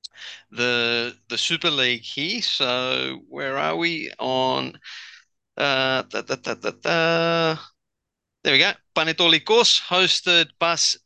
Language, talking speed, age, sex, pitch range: English, 120 wpm, 30-49, male, 115-155 Hz